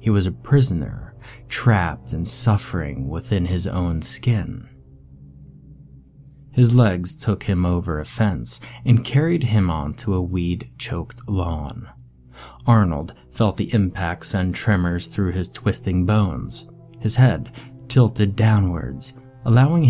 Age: 30-49